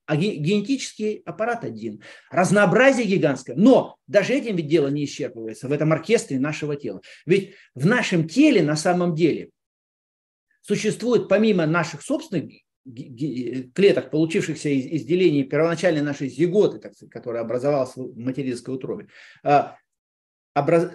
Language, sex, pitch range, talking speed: Russian, male, 140-195 Hz, 125 wpm